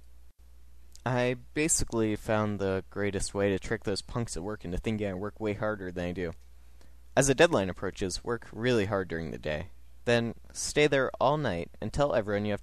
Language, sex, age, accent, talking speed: English, male, 20-39, American, 195 wpm